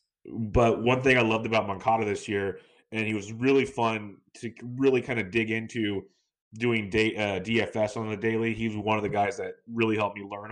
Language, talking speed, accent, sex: English, 215 wpm, American, male